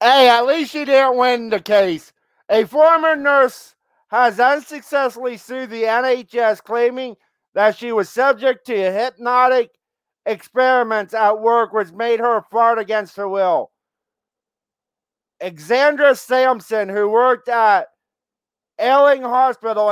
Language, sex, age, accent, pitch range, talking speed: English, male, 50-69, American, 200-240 Hz, 120 wpm